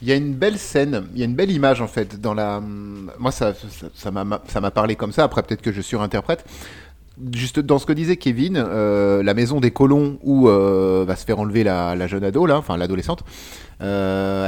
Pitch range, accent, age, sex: 95-125 Hz, French, 30-49, male